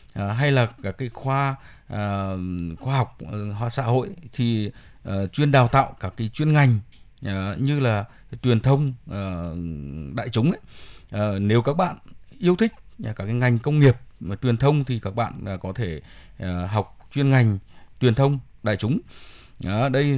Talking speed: 180 wpm